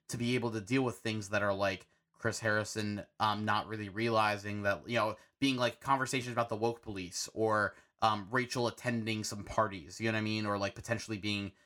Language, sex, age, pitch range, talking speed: English, male, 20-39, 105-125 Hz, 210 wpm